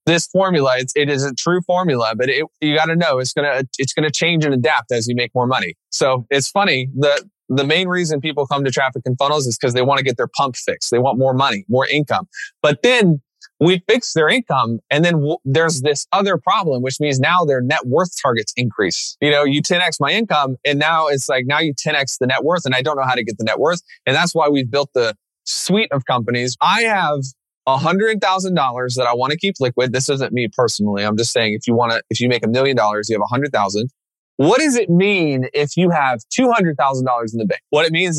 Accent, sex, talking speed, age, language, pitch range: American, male, 245 wpm, 20-39, English, 130-170 Hz